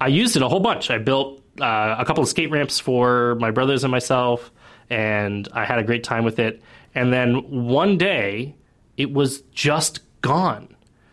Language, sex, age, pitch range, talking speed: English, male, 20-39, 110-135 Hz, 190 wpm